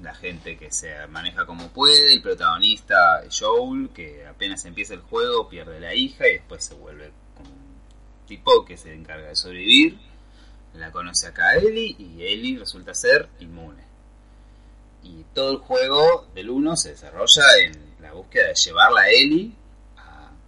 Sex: male